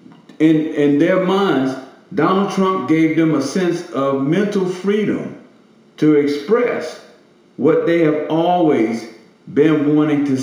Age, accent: 50-69, American